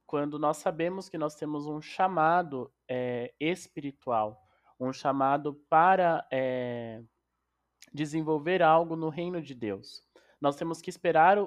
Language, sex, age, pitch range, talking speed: Portuguese, male, 20-39, 140-175 Hz, 125 wpm